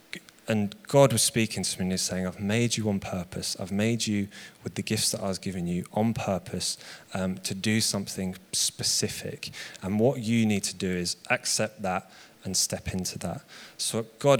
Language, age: English, 20-39